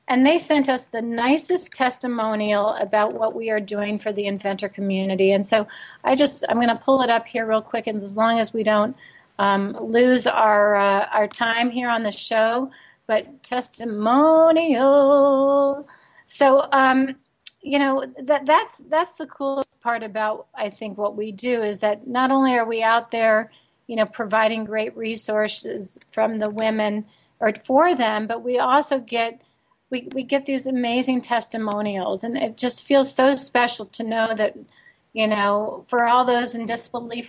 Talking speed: 175 wpm